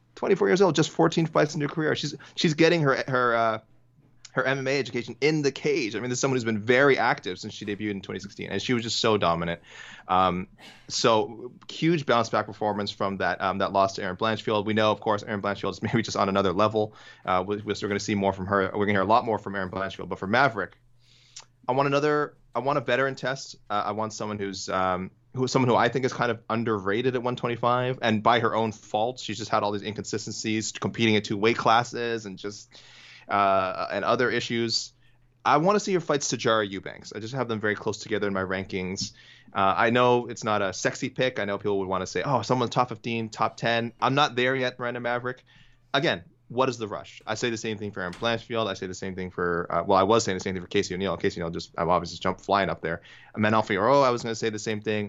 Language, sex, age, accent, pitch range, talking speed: English, male, 20-39, American, 100-125 Hz, 255 wpm